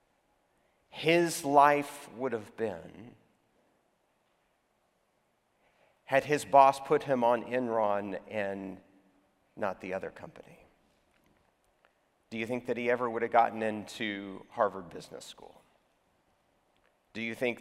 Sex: male